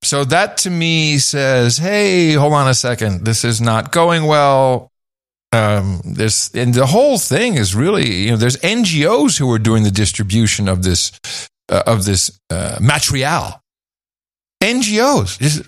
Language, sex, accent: English, male, American